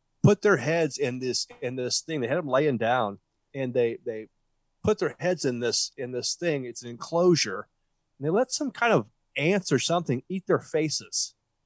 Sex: male